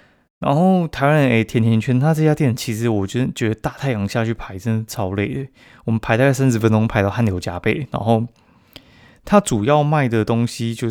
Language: Chinese